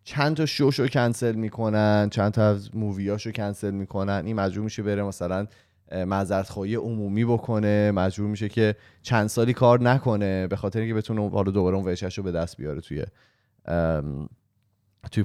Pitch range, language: 95-115 Hz, Persian